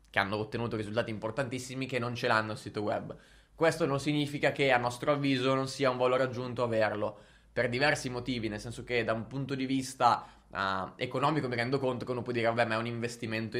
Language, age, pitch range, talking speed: Italian, 20-39, 115-135 Hz, 215 wpm